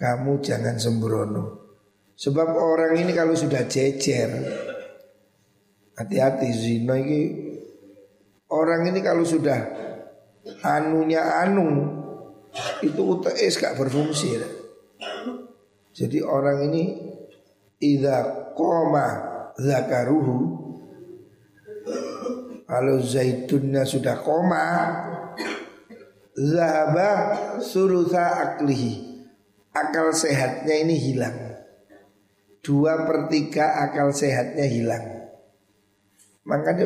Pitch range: 115-165 Hz